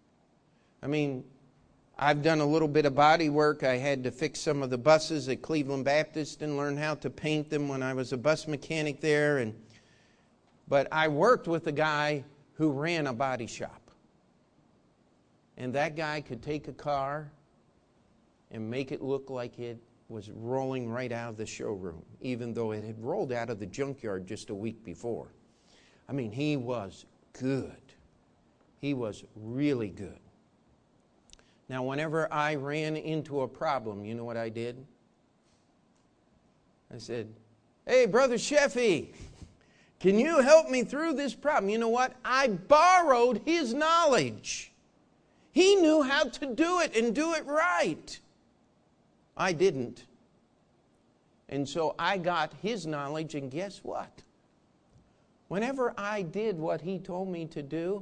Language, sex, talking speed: English, male, 155 wpm